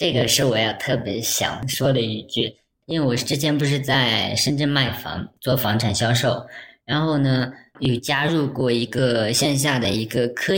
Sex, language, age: male, Chinese, 20-39